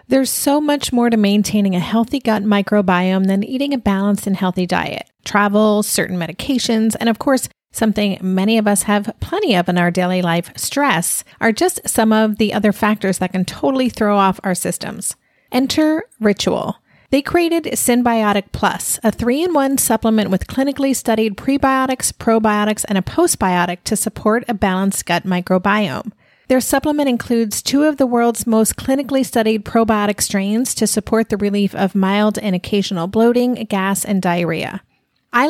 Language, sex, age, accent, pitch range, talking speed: English, female, 40-59, American, 200-255 Hz, 165 wpm